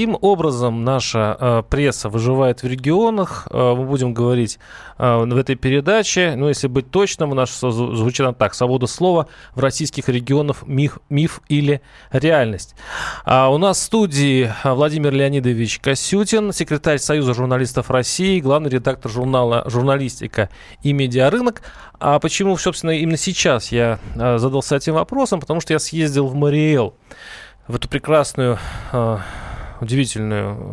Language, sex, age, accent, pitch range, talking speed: Russian, male, 20-39, native, 120-165 Hz, 130 wpm